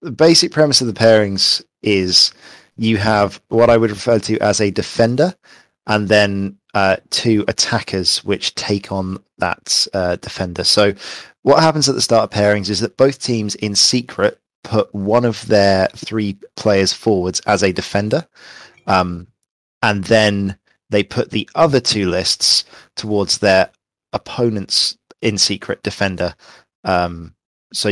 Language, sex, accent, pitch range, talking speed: English, male, British, 95-115 Hz, 145 wpm